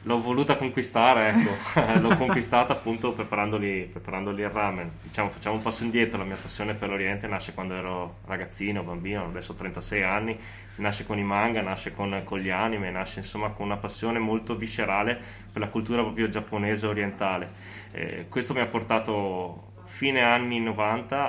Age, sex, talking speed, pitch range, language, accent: 20-39, male, 170 wpm, 95-110 Hz, Italian, native